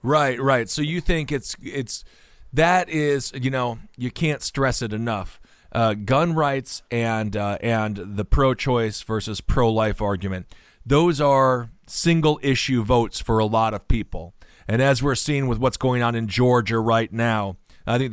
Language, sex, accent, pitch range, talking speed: English, male, American, 115-150 Hz, 170 wpm